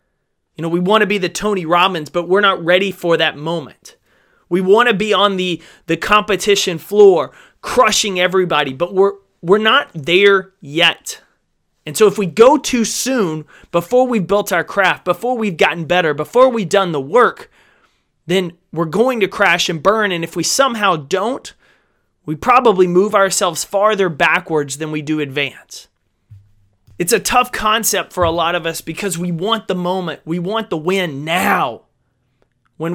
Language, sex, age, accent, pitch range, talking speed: English, male, 30-49, American, 155-200 Hz, 175 wpm